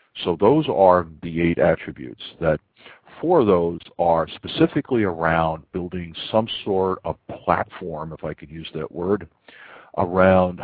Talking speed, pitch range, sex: 140 wpm, 85-105 Hz, male